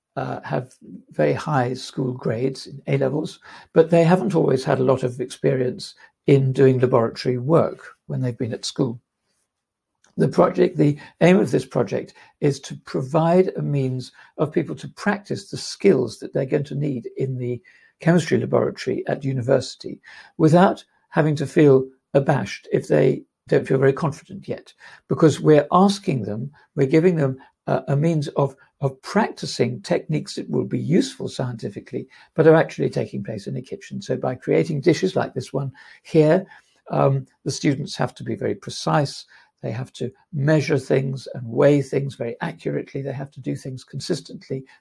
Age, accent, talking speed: 60-79, British, 170 wpm